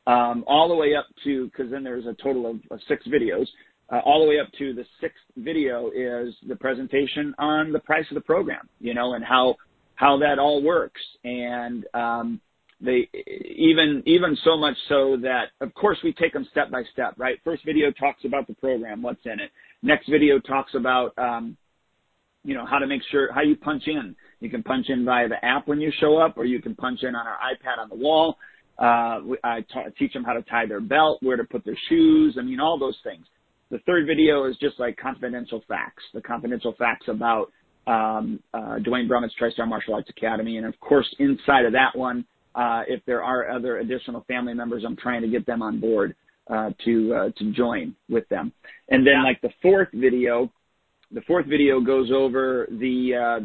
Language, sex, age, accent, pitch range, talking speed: English, male, 40-59, American, 120-150 Hz, 210 wpm